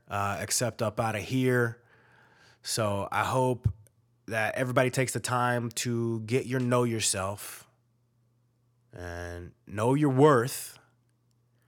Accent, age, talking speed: American, 30-49, 120 wpm